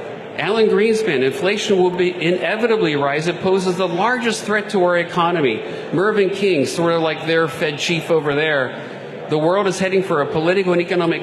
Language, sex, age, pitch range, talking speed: English, male, 50-69, 150-190 Hz, 180 wpm